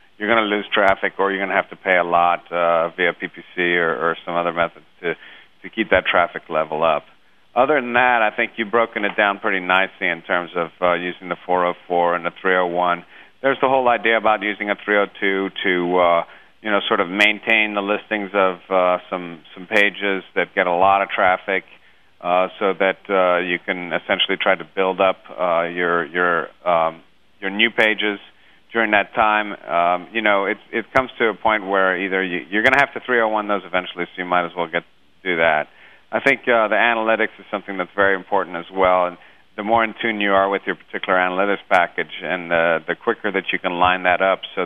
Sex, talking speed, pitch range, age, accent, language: male, 220 wpm, 90-105 Hz, 40-59, American, English